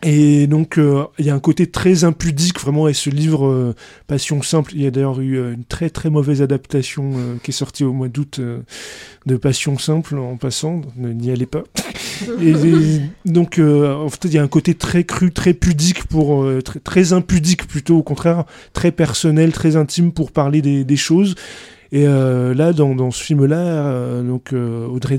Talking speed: 210 wpm